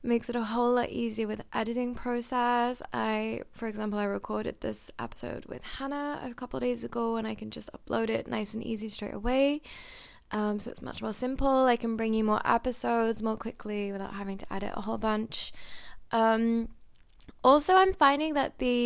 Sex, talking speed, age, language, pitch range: female, 190 wpm, 20-39, English, 200-245 Hz